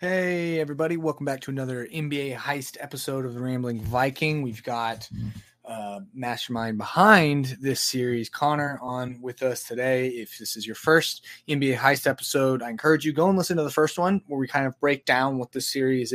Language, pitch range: English, 120-155 Hz